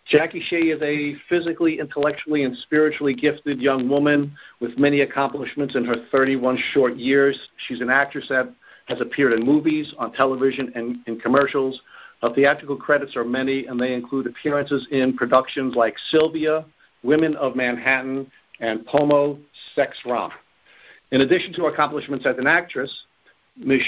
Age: 50-69